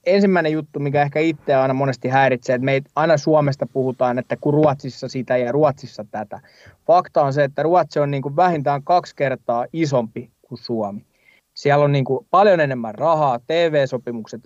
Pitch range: 125-155 Hz